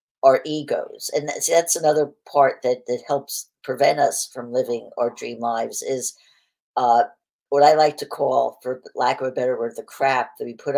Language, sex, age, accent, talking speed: English, female, 60-79, American, 195 wpm